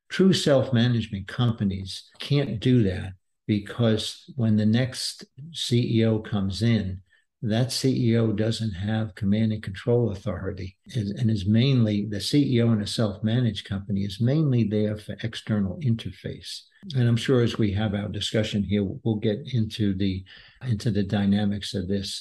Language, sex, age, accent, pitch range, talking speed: English, male, 60-79, American, 105-120 Hz, 145 wpm